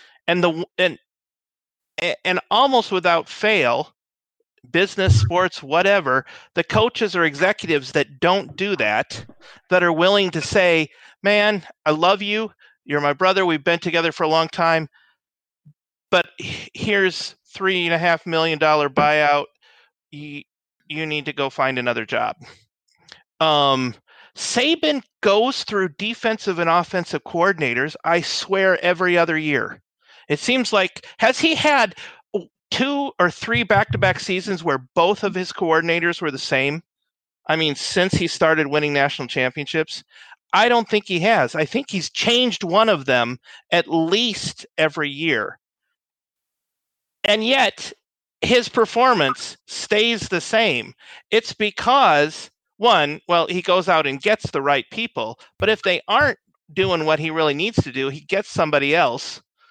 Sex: male